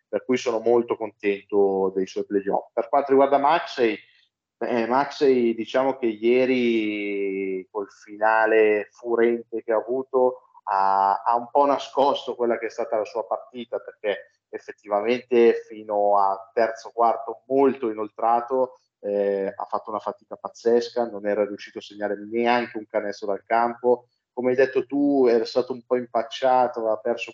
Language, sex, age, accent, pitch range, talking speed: Italian, male, 30-49, native, 105-125 Hz, 155 wpm